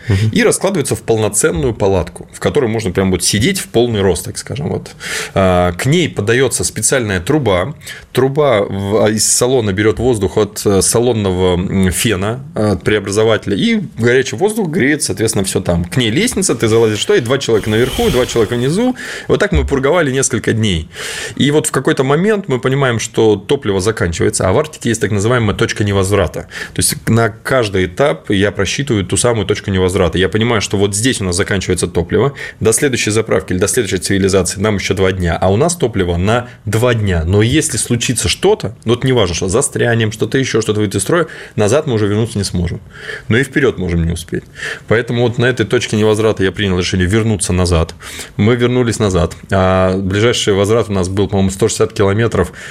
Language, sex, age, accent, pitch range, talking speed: Russian, male, 20-39, native, 95-120 Hz, 185 wpm